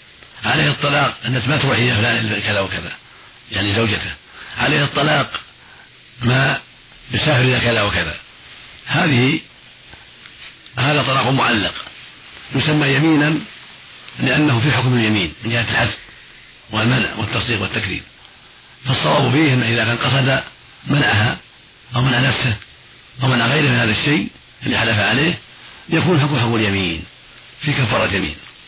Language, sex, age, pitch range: Arabic, male, 50-69, 110-140 Hz